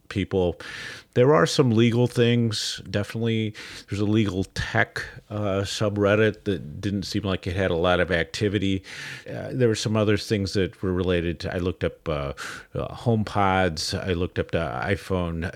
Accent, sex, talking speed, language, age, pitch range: American, male, 170 wpm, English, 40-59, 90-110 Hz